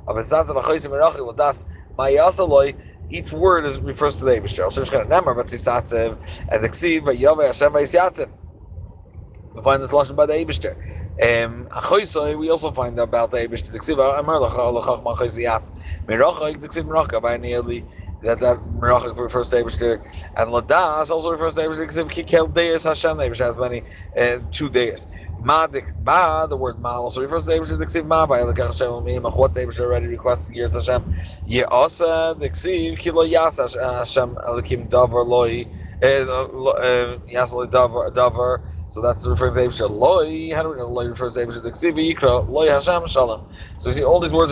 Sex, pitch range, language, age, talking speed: male, 95-145 Hz, English, 30-49, 100 wpm